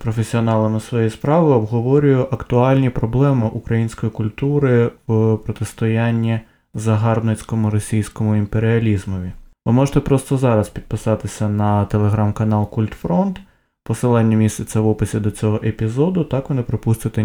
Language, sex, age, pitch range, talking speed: Ukrainian, male, 20-39, 105-125 Hz, 110 wpm